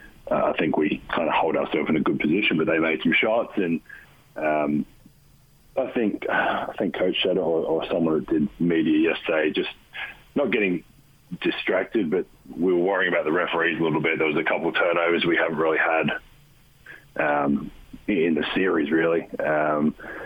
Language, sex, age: English, male, 30-49